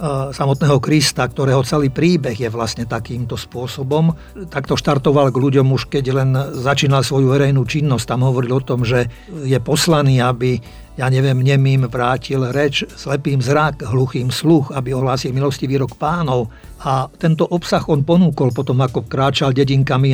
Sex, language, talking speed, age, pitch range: male, Slovak, 150 wpm, 50-69, 130-150 Hz